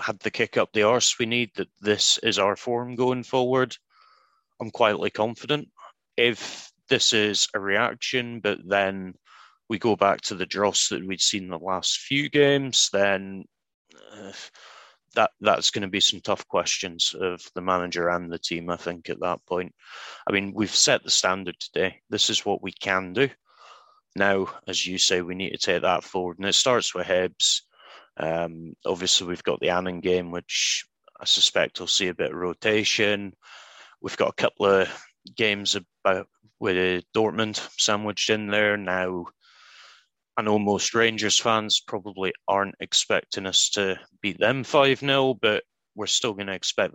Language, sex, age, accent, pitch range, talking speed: English, male, 30-49, British, 90-115 Hz, 175 wpm